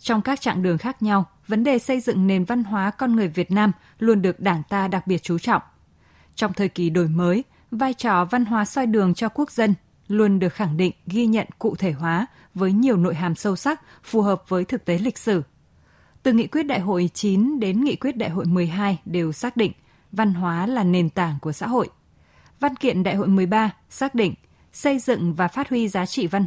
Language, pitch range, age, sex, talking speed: Vietnamese, 180-235 Hz, 20-39, female, 225 wpm